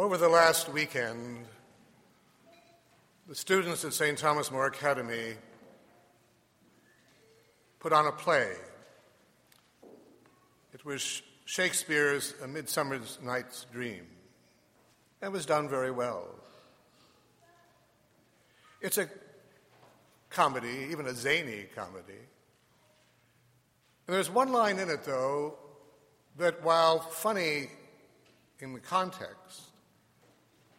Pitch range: 120-150 Hz